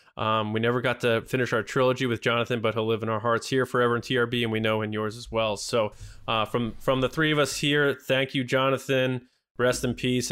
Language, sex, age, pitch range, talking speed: English, male, 20-39, 110-135 Hz, 245 wpm